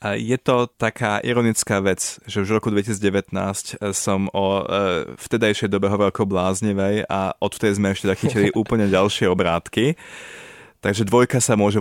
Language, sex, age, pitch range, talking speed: Czech, male, 20-39, 90-105 Hz, 150 wpm